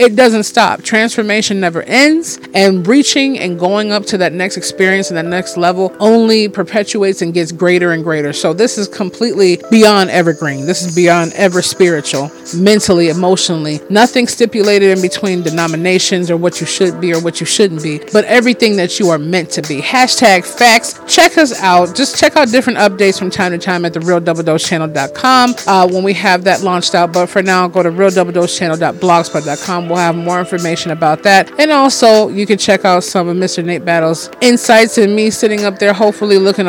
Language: English